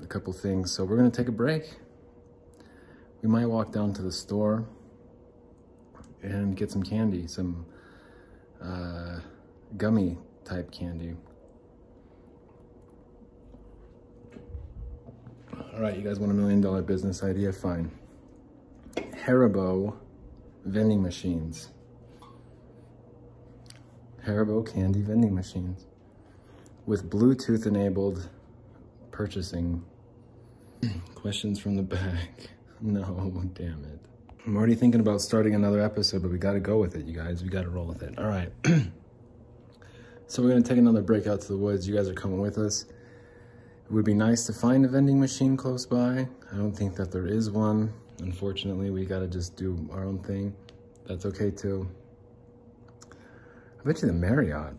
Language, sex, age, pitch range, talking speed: English, male, 30-49, 95-120 Hz, 140 wpm